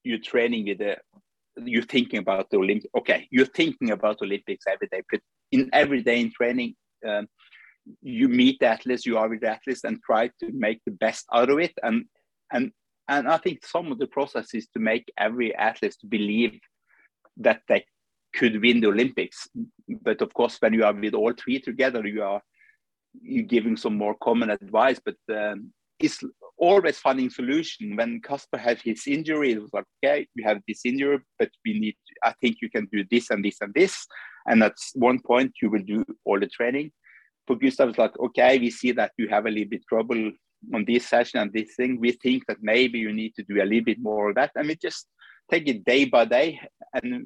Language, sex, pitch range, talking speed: English, male, 110-160 Hz, 210 wpm